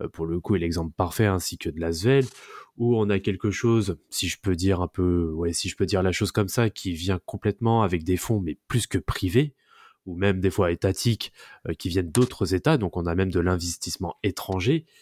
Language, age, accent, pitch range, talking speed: French, 20-39, French, 90-110 Hz, 230 wpm